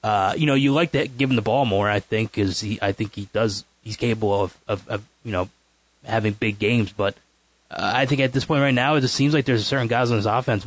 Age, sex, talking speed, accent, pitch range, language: 20-39, male, 275 wpm, American, 105-135 Hz, English